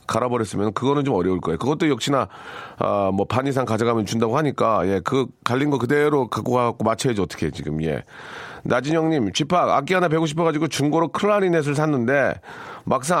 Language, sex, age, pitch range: Korean, male, 40-59, 110-165 Hz